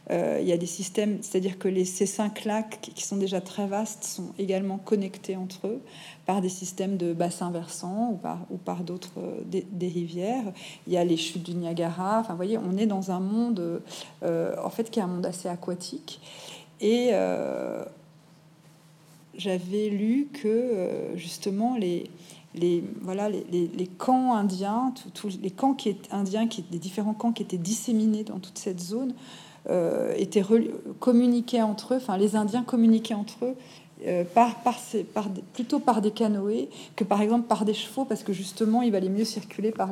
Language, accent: French, French